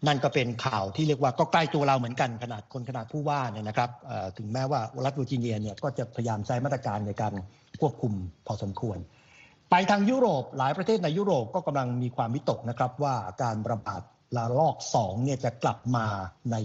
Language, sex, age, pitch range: Thai, male, 60-79, 120-150 Hz